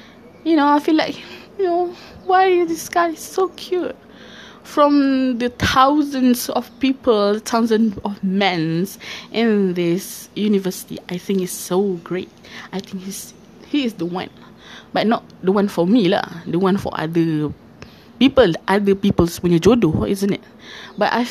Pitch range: 180-230 Hz